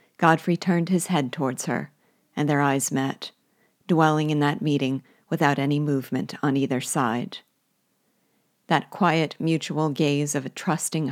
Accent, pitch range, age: American, 145-170 Hz, 40-59